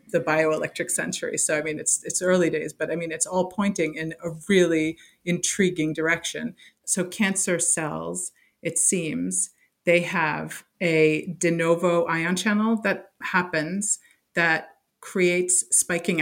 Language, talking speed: English, 140 wpm